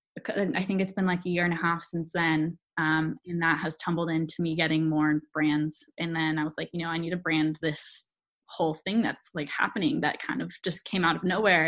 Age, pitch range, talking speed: 10-29, 160-190 Hz, 240 wpm